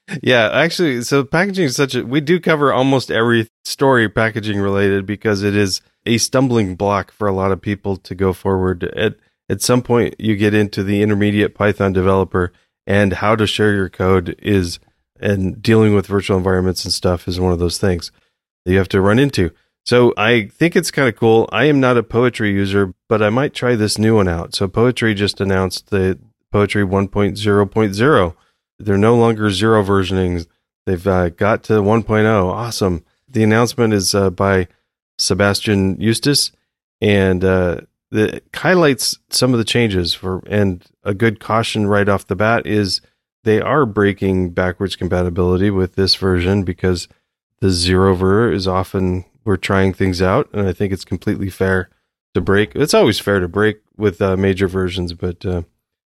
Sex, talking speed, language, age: male, 180 wpm, English, 30-49